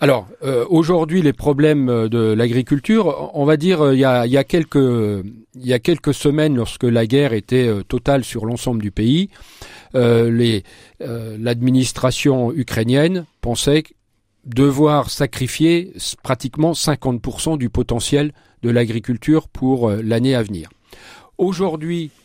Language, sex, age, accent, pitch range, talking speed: French, male, 40-59, French, 115-150 Hz, 135 wpm